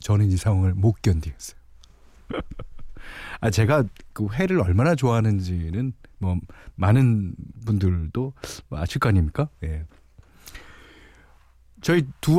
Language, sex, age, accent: Korean, male, 40-59, native